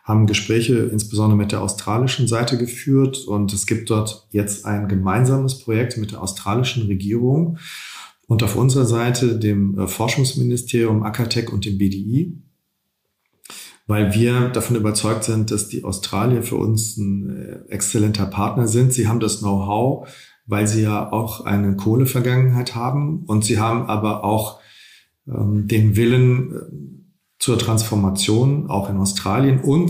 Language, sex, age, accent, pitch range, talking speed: German, male, 40-59, German, 105-125 Hz, 140 wpm